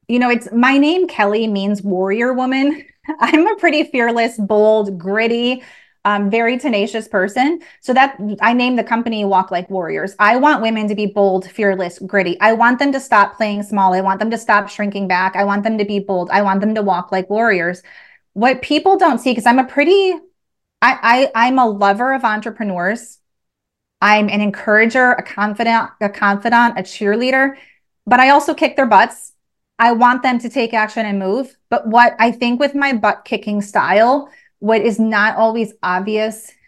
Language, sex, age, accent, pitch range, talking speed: English, female, 30-49, American, 200-245 Hz, 190 wpm